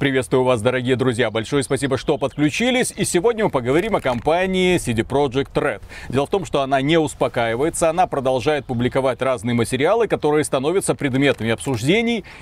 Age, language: 30-49, Russian